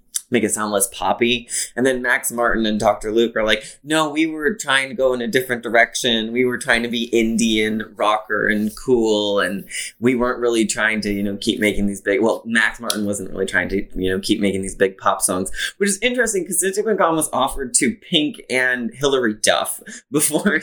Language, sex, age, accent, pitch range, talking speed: English, male, 20-39, American, 100-125 Hz, 215 wpm